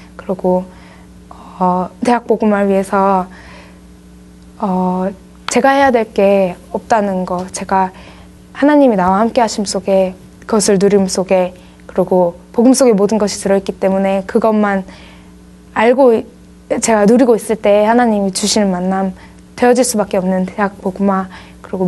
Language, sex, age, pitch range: Korean, female, 20-39, 180-220 Hz